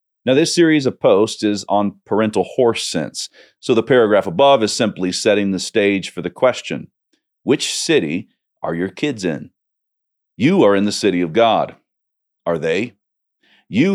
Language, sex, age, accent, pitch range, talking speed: English, male, 40-59, American, 100-120 Hz, 165 wpm